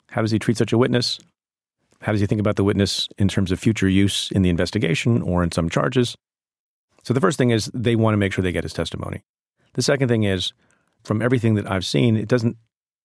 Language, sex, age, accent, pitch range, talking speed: English, male, 40-59, American, 90-115 Hz, 235 wpm